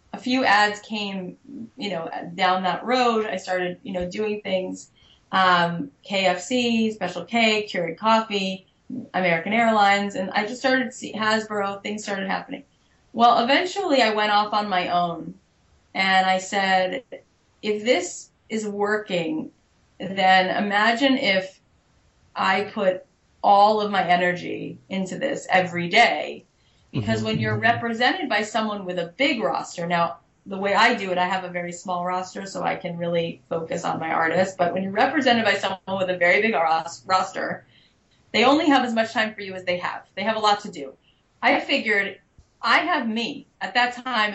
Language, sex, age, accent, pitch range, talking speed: English, female, 30-49, American, 180-230 Hz, 170 wpm